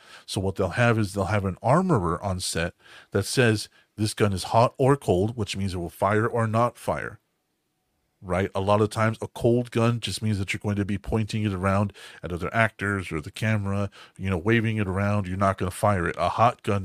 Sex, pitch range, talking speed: male, 95-115 Hz, 230 wpm